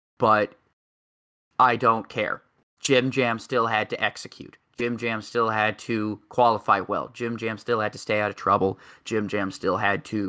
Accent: American